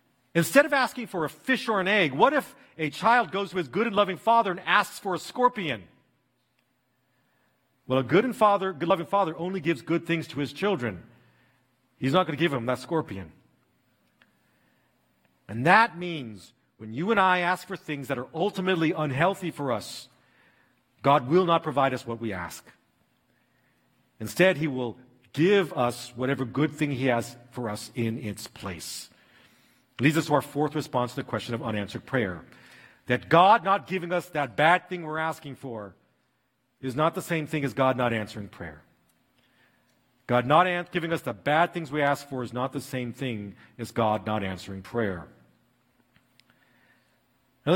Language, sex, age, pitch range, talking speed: English, male, 50-69, 120-170 Hz, 175 wpm